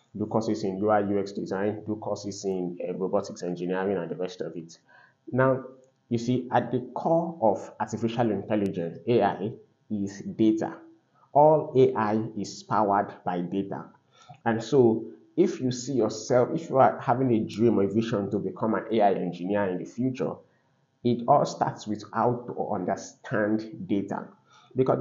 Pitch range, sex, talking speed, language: 100-120 Hz, male, 160 wpm, English